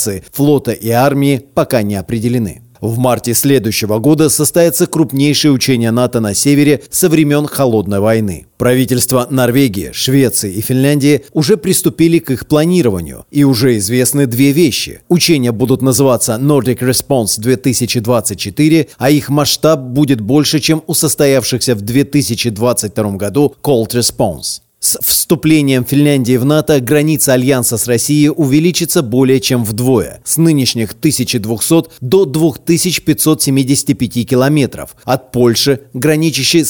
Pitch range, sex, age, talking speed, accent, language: 120-150 Hz, male, 30-49, 125 wpm, native, Russian